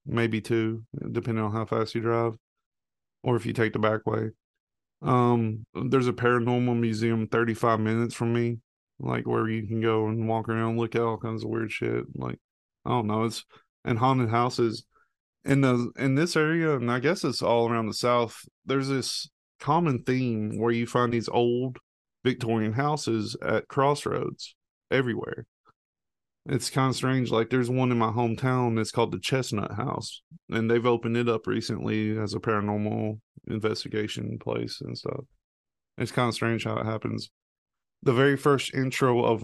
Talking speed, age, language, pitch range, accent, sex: 175 wpm, 20-39, English, 110-125 Hz, American, male